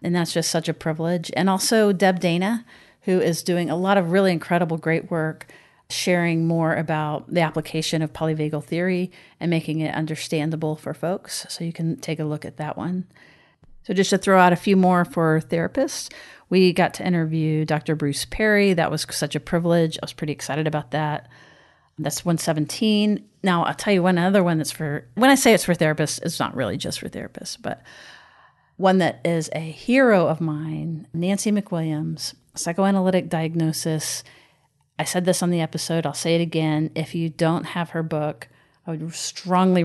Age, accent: 40-59, American